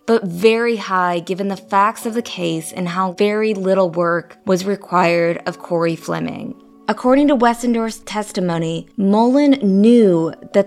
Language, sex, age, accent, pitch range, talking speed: English, female, 20-39, American, 185-235 Hz, 145 wpm